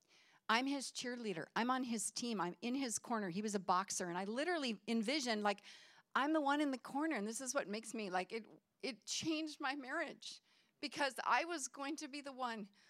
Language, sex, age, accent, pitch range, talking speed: English, female, 50-69, American, 205-295 Hz, 215 wpm